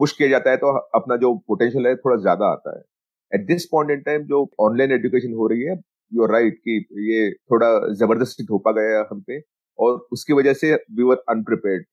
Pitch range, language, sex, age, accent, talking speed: 105-150 Hz, Hindi, male, 30-49, native, 190 wpm